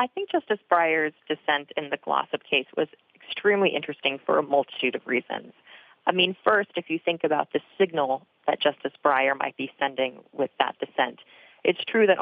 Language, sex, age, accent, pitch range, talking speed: English, female, 30-49, American, 145-185 Hz, 185 wpm